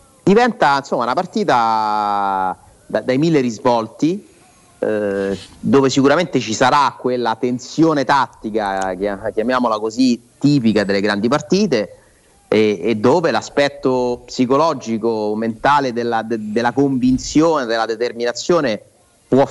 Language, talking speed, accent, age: Italian, 100 wpm, native, 30-49